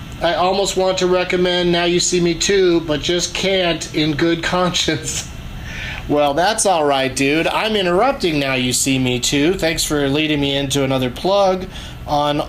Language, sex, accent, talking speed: English, male, American, 170 wpm